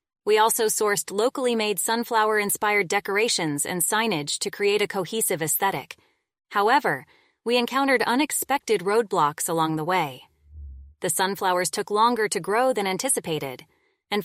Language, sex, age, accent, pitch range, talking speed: English, female, 20-39, American, 185-230 Hz, 125 wpm